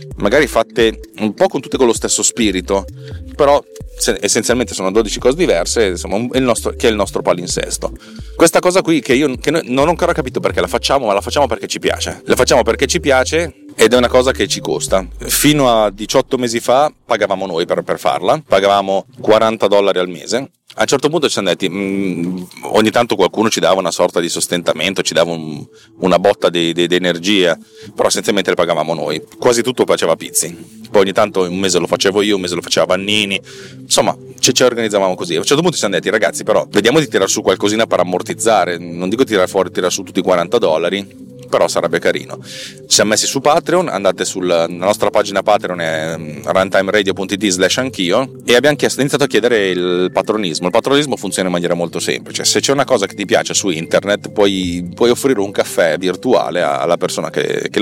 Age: 30-49